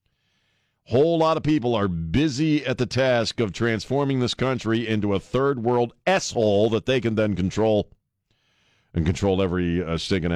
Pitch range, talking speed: 105-130 Hz, 160 wpm